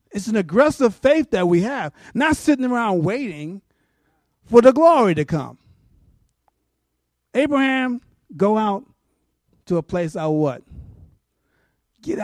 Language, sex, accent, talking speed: English, male, American, 130 wpm